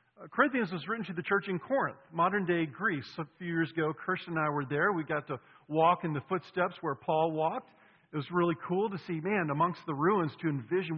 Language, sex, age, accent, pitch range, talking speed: English, male, 50-69, American, 155-200 Hz, 230 wpm